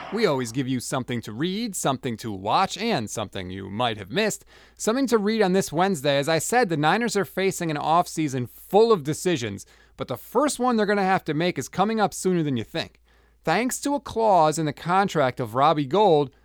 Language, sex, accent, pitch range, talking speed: English, male, American, 135-195 Hz, 225 wpm